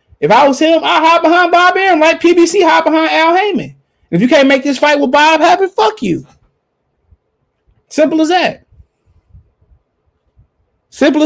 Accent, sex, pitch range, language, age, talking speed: American, male, 245-290 Hz, English, 20-39, 160 wpm